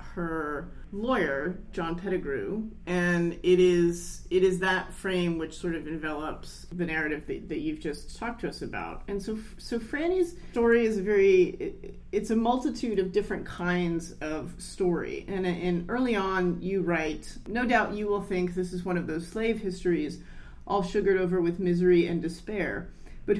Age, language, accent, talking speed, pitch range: 30-49, English, American, 170 wpm, 175-210 Hz